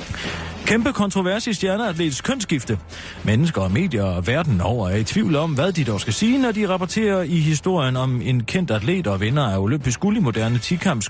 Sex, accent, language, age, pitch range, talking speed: male, native, Danish, 40-59, 105-175 Hz, 200 wpm